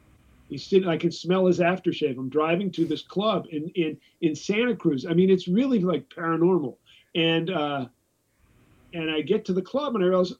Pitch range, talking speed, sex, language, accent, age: 160-200 Hz, 195 wpm, male, English, American, 50-69